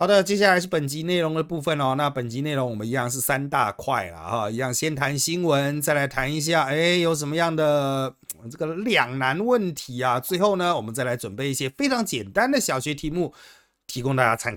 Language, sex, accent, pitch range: Chinese, male, native, 125-180 Hz